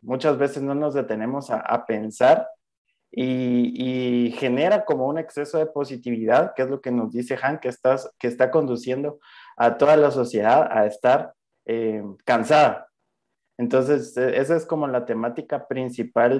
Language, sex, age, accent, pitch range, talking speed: Spanish, male, 20-39, Mexican, 115-140 Hz, 155 wpm